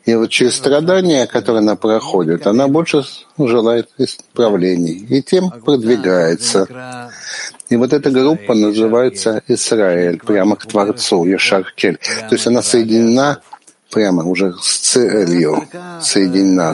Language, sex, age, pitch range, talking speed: Russian, male, 60-79, 105-135 Hz, 120 wpm